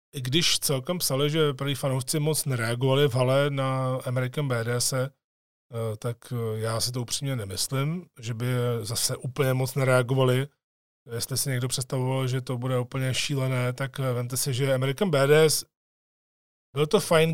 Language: Czech